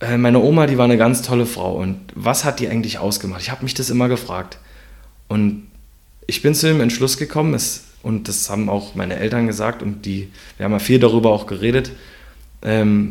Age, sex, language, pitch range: 20-39, male, German, 100-125 Hz